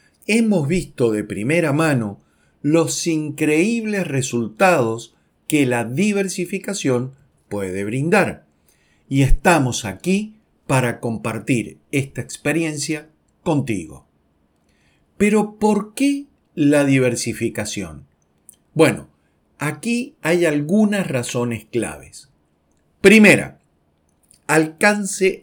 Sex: male